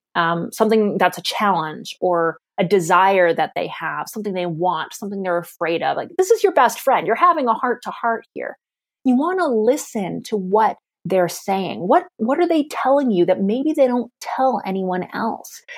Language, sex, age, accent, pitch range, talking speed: English, female, 30-49, American, 185-245 Hz, 190 wpm